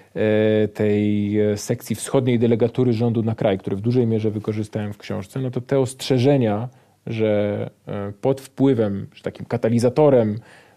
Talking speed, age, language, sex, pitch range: 135 wpm, 40-59, Polish, male, 105-120 Hz